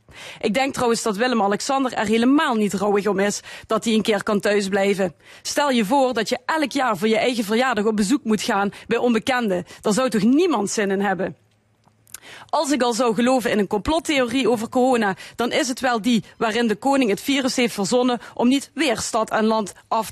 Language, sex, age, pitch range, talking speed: Dutch, female, 30-49, 215-265 Hz, 210 wpm